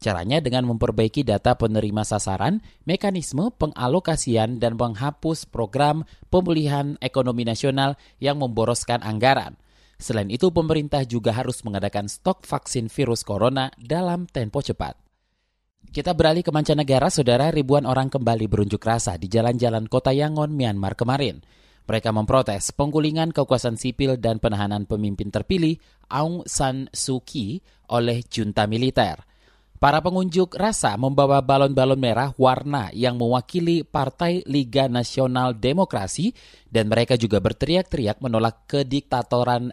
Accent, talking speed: native, 120 wpm